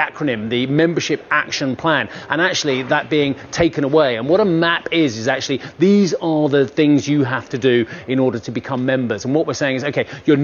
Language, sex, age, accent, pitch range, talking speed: English, male, 30-49, British, 120-145 Hz, 220 wpm